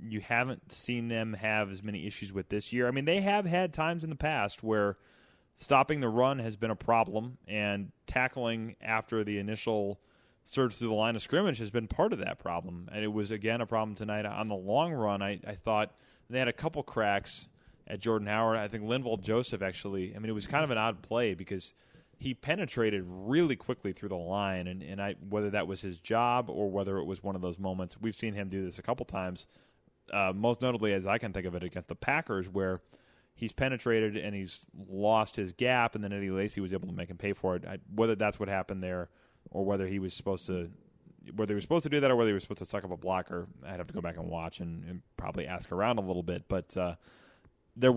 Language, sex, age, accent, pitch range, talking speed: English, male, 20-39, American, 95-115 Hz, 240 wpm